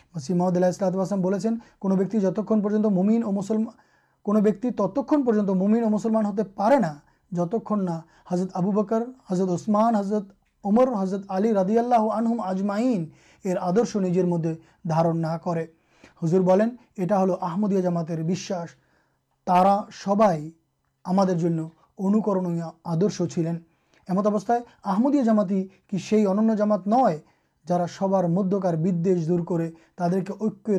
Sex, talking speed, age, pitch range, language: male, 110 wpm, 30-49, 180-215 Hz, Urdu